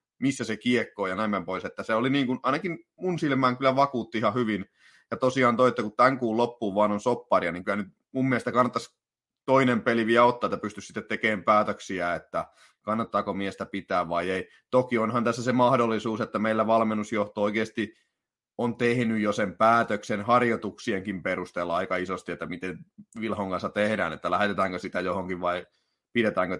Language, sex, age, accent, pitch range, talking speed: Finnish, male, 30-49, native, 105-135 Hz, 175 wpm